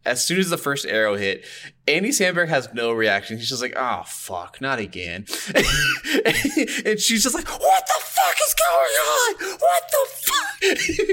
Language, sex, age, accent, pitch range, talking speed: English, male, 20-39, American, 115-185 Hz, 175 wpm